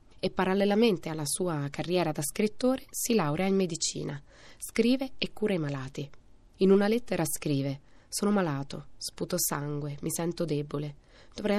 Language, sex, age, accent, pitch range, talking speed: Italian, female, 20-39, native, 145-190 Hz, 145 wpm